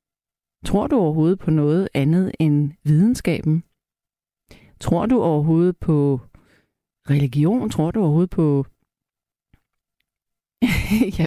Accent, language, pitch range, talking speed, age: native, Danish, 150-220 Hz, 95 wpm, 40-59